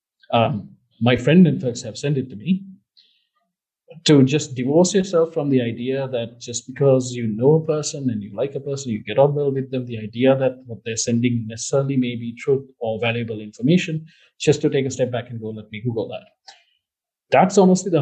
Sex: male